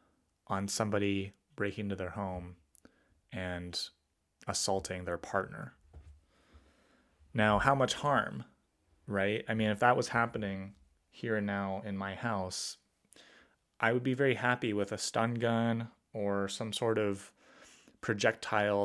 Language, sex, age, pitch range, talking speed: English, male, 20-39, 90-110 Hz, 130 wpm